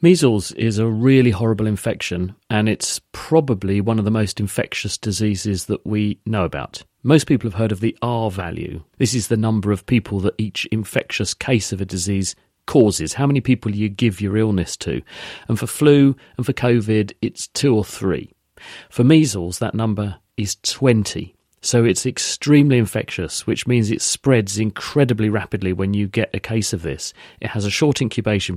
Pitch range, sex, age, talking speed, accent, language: 105-120 Hz, male, 40-59, 185 wpm, British, English